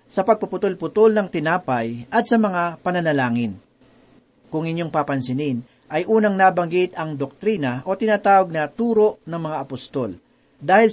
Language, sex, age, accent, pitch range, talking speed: Filipino, male, 40-59, native, 150-205 Hz, 130 wpm